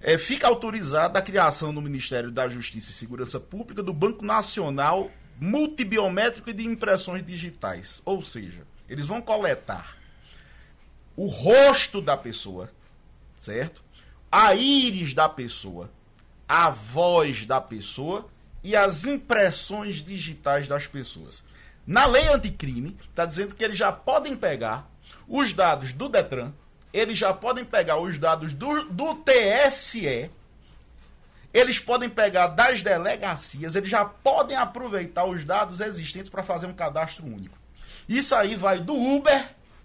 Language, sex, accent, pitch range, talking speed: Portuguese, male, Brazilian, 145-240 Hz, 130 wpm